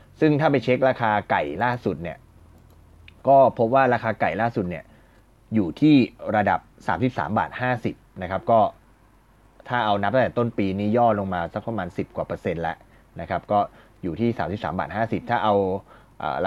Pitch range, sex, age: 95-120 Hz, male, 20-39